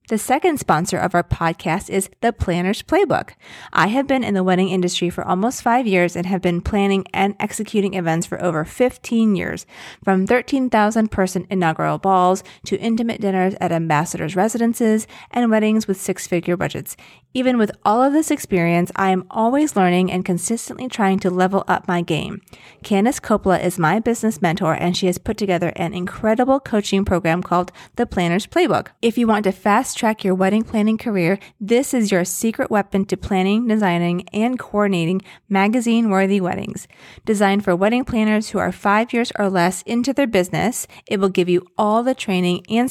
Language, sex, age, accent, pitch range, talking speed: English, female, 30-49, American, 180-225 Hz, 180 wpm